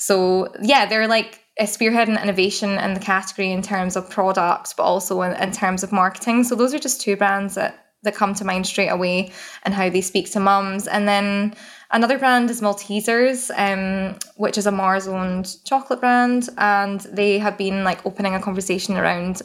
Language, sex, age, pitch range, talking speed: English, female, 10-29, 185-215 Hz, 195 wpm